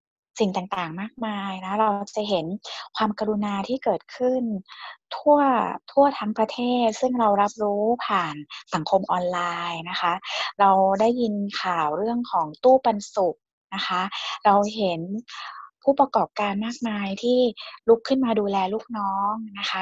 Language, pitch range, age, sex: Thai, 190-230 Hz, 20-39, female